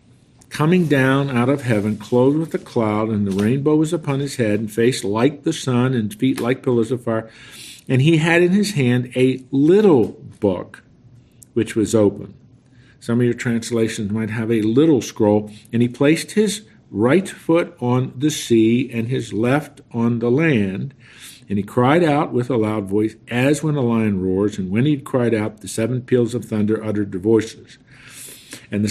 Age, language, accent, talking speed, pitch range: 50-69, English, American, 190 wpm, 110-130 Hz